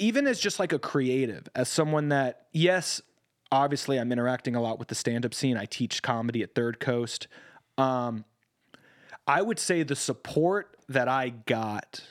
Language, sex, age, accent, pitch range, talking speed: English, male, 30-49, American, 115-145 Hz, 170 wpm